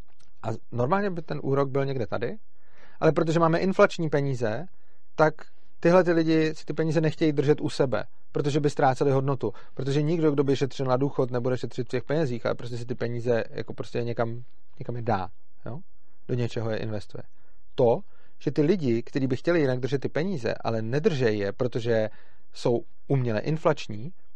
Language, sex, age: Czech, male, 30-49